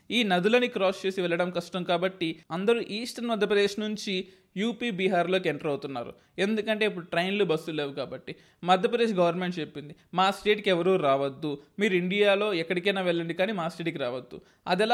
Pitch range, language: 175-225 Hz, Telugu